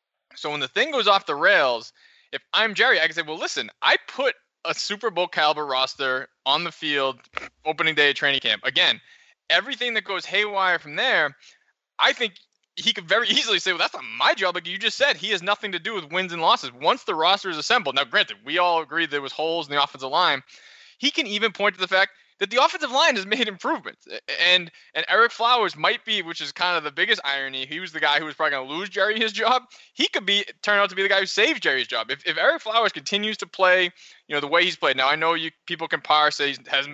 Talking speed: 250 wpm